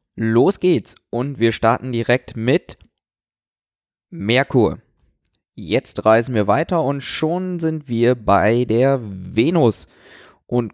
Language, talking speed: German, 110 wpm